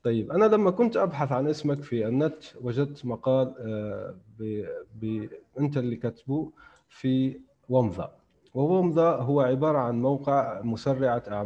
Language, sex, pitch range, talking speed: Arabic, male, 110-135 Hz, 125 wpm